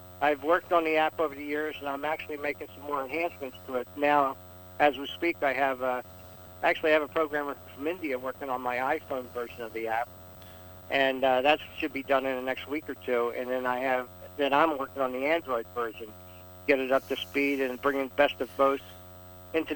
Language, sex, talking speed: English, male, 225 wpm